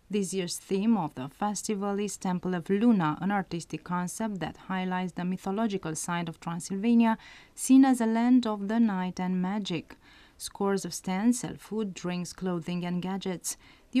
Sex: female